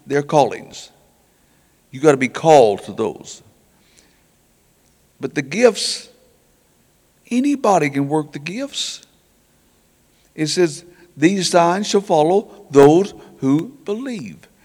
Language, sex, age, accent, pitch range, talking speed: English, male, 60-79, American, 135-200 Hz, 105 wpm